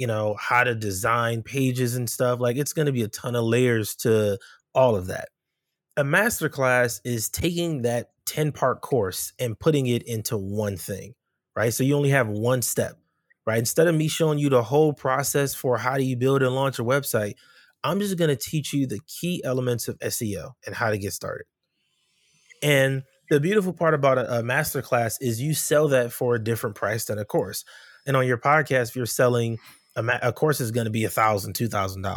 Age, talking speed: 30-49, 200 wpm